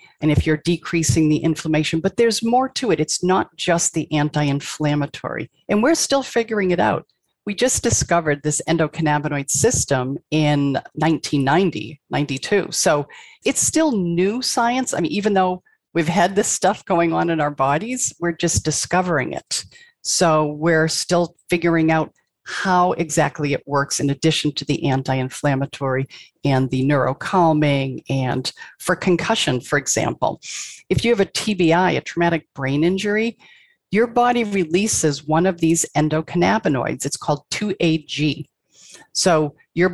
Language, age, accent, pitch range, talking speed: English, 50-69, American, 145-185 Hz, 145 wpm